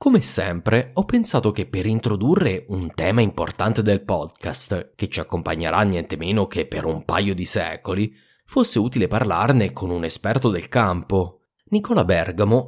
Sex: male